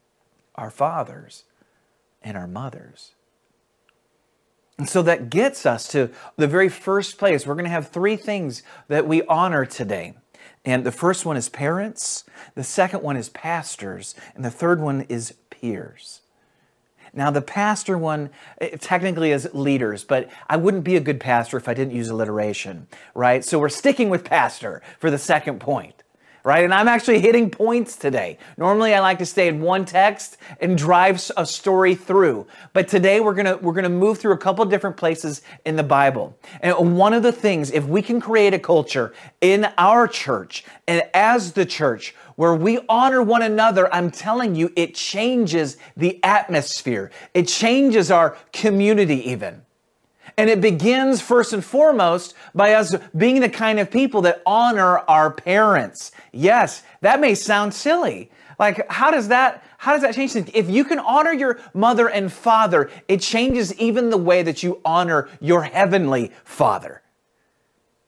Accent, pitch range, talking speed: American, 160-215 Hz, 170 wpm